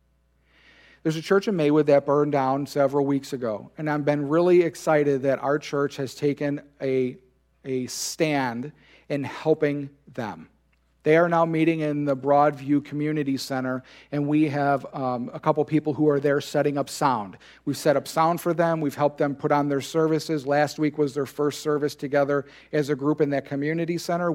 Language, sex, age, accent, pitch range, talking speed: English, male, 40-59, American, 130-155 Hz, 185 wpm